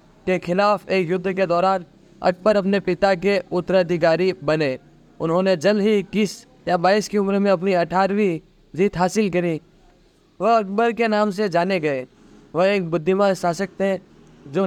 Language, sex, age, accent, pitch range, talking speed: Hindi, male, 20-39, native, 175-200 Hz, 160 wpm